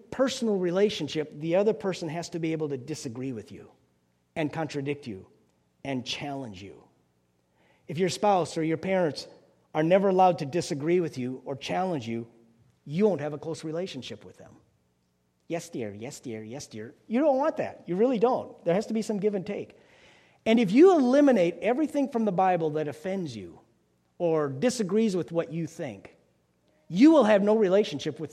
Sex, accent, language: male, American, English